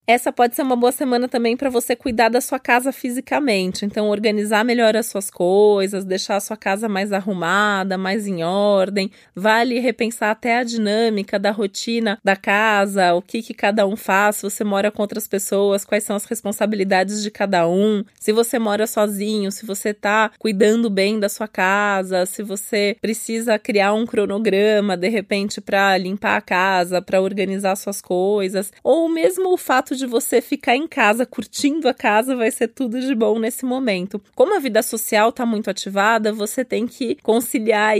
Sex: female